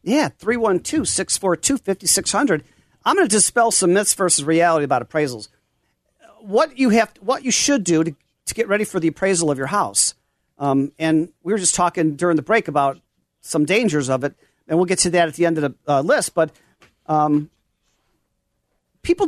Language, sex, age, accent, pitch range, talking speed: English, male, 40-59, American, 150-210 Hz, 185 wpm